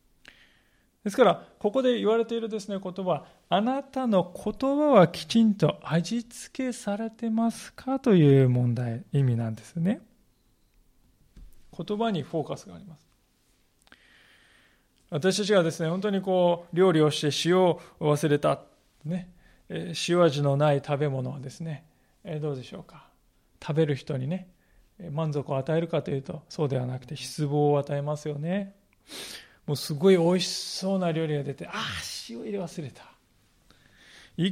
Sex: male